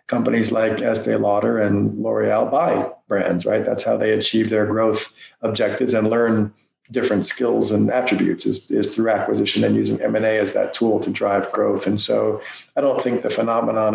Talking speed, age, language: 180 wpm, 50-69, English